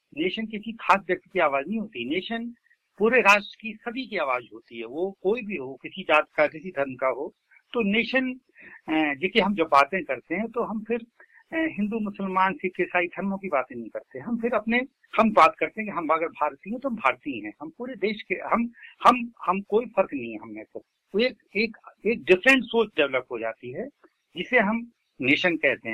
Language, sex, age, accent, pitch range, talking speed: Hindi, male, 60-79, native, 145-225 Hz, 205 wpm